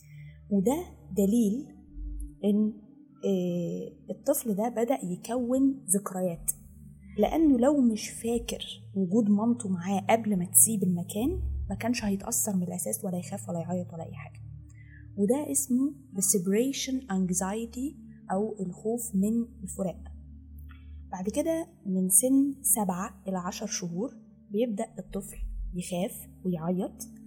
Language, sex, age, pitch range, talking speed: Arabic, female, 20-39, 170-230 Hz, 115 wpm